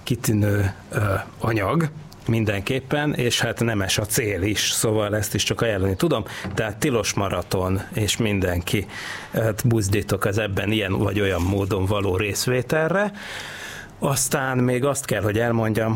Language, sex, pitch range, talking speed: Hungarian, male, 100-120 Hz, 145 wpm